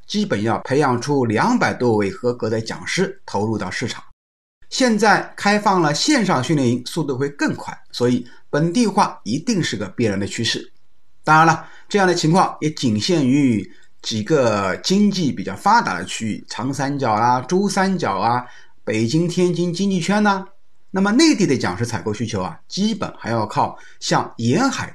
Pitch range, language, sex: 120-200 Hz, Chinese, male